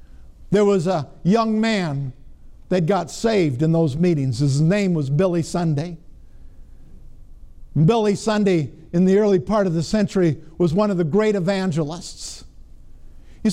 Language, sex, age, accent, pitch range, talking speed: English, male, 50-69, American, 155-220 Hz, 140 wpm